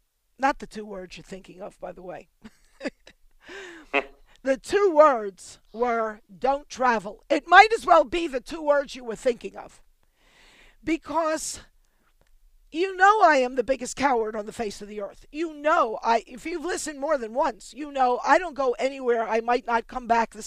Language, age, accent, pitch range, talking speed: English, 50-69, American, 220-295 Hz, 185 wpm